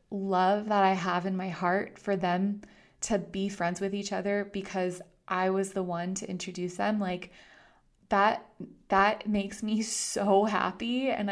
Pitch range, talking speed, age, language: 180-205 Hz, 165 wpm, 20-39, English